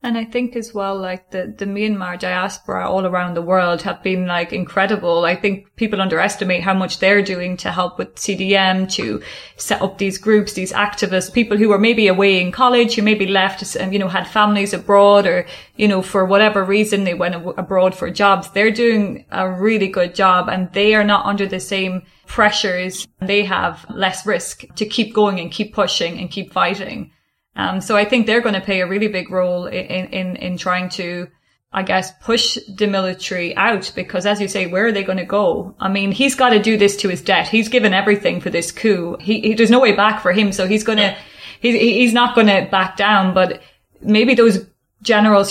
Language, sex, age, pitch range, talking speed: English, female, 30-49, 185-210 Hz, 210 wpm